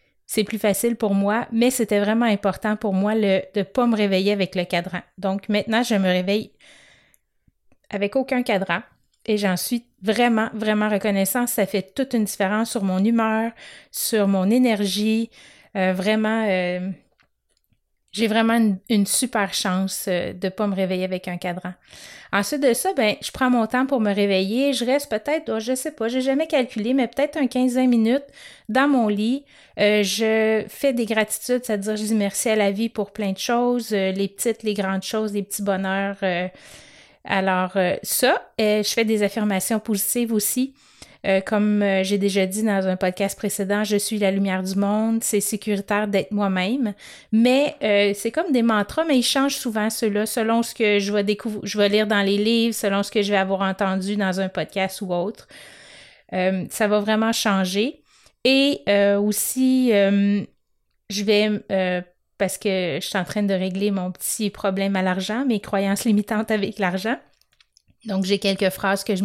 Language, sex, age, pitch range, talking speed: French, female, 30-49, 195-225 Hz, 190 wpm